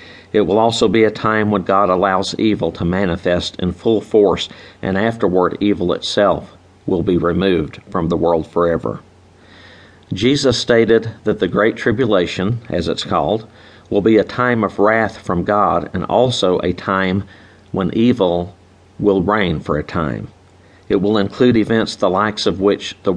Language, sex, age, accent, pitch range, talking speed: English, male, 50-69, American, 90-110 Hz, 165 wpm